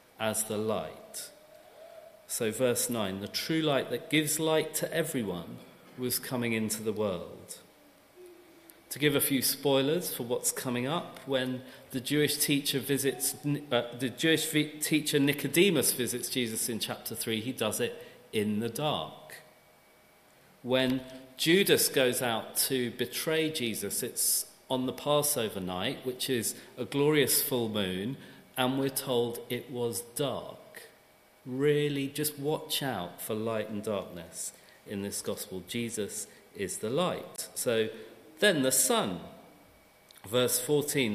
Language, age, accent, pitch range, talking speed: English, 40-59, British, 120-150 Hz, 135 wpm